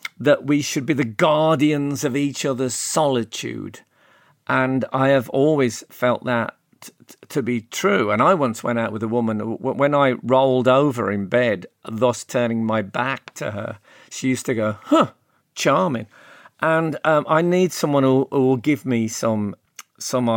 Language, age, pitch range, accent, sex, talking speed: English, 50-69, 115-145 Hz, British, male, 175 wpm